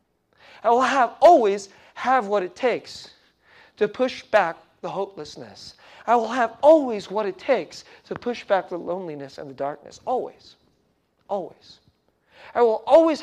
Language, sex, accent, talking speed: English, male, American, 150 wpm